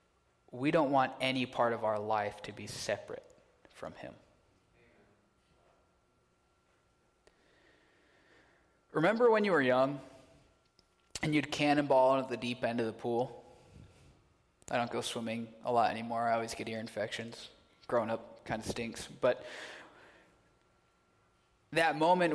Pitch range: 120-155 Hz